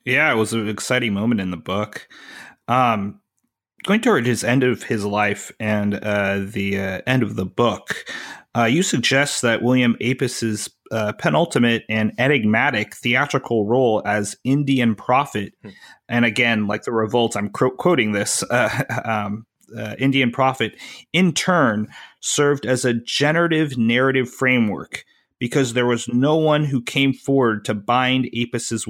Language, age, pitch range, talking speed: English, 30-49, 110-140 Hz, 155 wpm